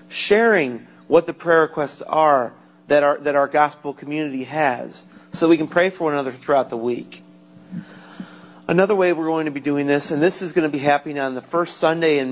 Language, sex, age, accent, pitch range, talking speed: English, male, 40-59, American, 135-165 Hz, 210 wpm